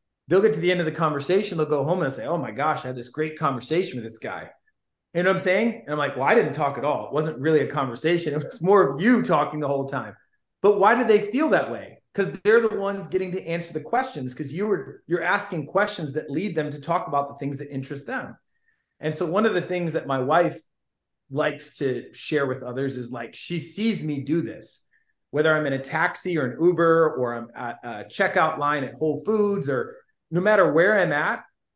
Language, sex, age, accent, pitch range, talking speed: English, male, 30-49, American, 140-190 Hz, 245 wpm